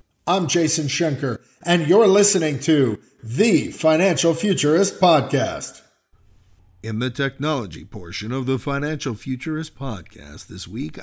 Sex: male